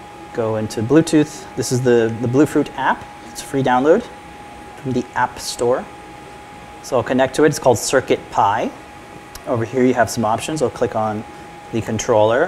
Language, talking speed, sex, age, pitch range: English, 175 wpm, male, 30-49, 115-145 Hz